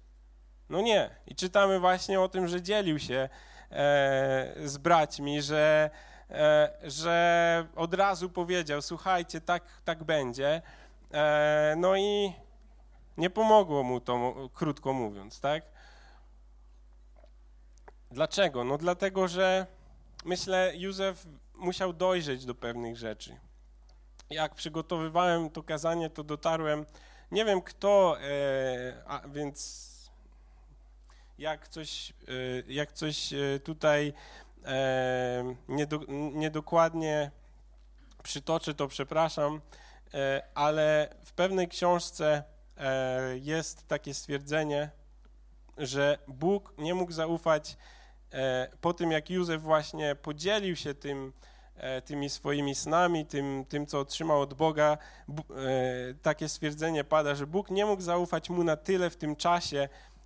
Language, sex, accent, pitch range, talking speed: Polish, male, native, 135-170 Hz, 100 wpm